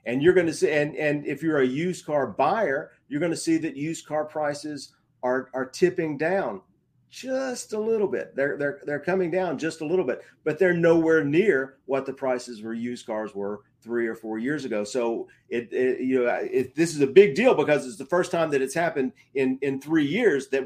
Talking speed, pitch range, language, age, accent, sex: 225 wpm, 120-155 Hz, English, 40-59, American, male